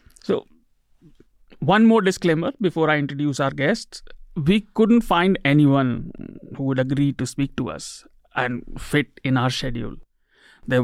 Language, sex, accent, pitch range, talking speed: English, male, Indian, 135-170 Hz, 145 wpm